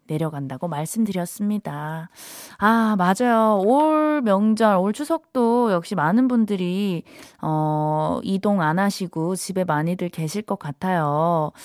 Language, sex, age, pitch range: Korean, female, 20-39, 165-245 Hz